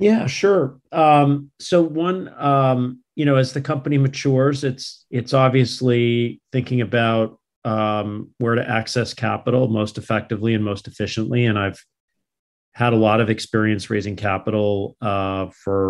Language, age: English, 40-59